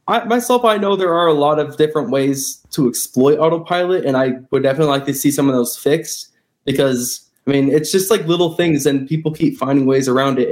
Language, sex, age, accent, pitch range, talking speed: English, male, 20-39, American, 135-165 Hz, 220 wpm